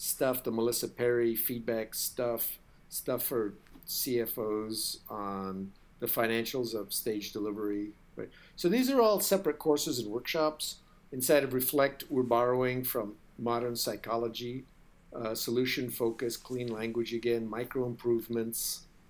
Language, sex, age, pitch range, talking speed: Swedish, male, 50-69, 115-140 Hz, 125 wpm